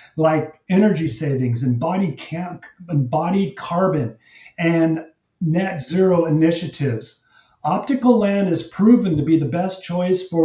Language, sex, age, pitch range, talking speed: English, male, 40-59, 155-205 Hz, 110 wpm